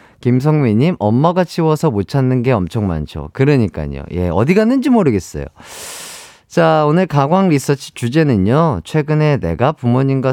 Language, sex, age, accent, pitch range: Korean, male, 40-59, native, 110-160 Hz